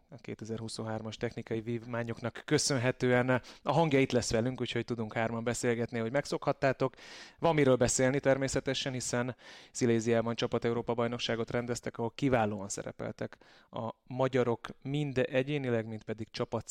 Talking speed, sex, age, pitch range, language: 120 wpm, male, 30-49, 115-130 Hz, Hungarian